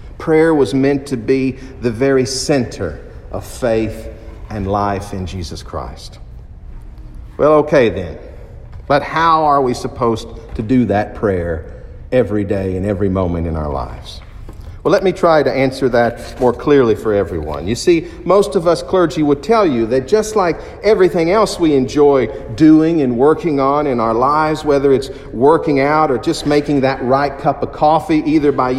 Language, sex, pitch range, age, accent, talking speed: English, male, 120-160 Hz, 50-69, American, 175 wpm